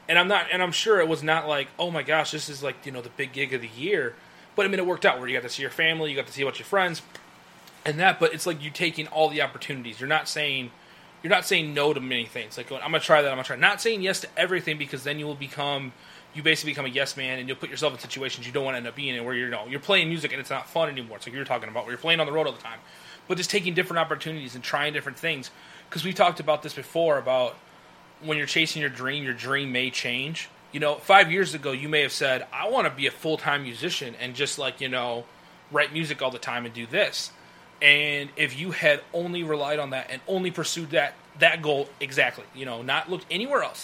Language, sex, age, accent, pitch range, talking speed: English, male, 20-39, American, 135-170 Hz, 285 wpm